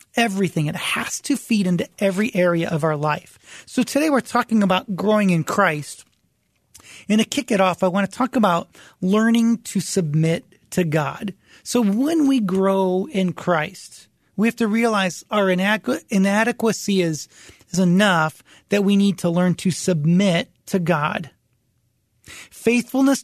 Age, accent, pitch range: 40-59, American, 175-225 Hz